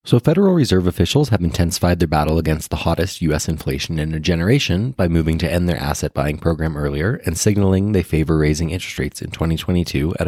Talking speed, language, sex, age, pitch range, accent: 200 wpm, English, male, 20-39, 75-100 Hz, American